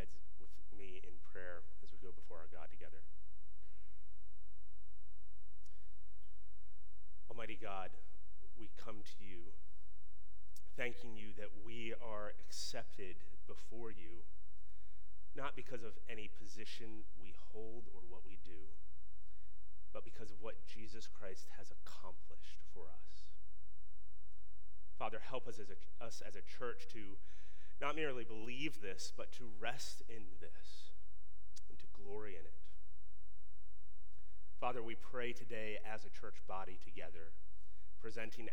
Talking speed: 120 wpm